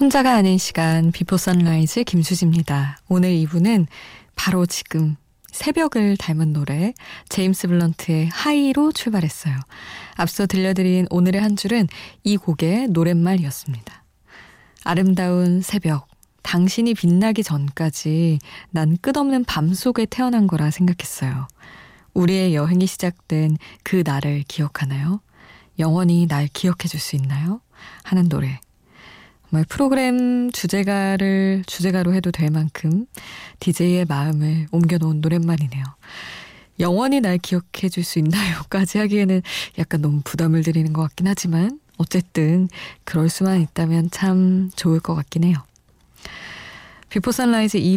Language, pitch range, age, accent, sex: Korean, 160-200 Hz, 20-39, native, female